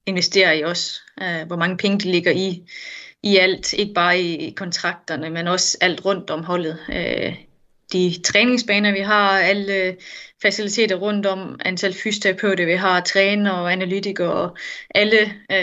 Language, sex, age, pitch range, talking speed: Danish, female, 20-39, 175-205 Hz, 145 wpm